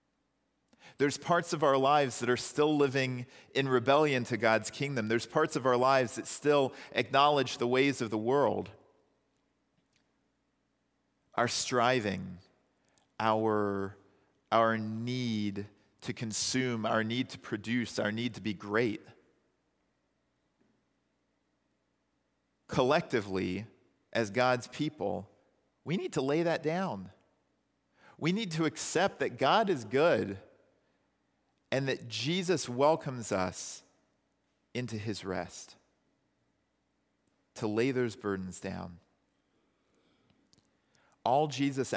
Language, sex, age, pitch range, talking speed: English, male, 40-59, 105-140 Hz, 110 wpm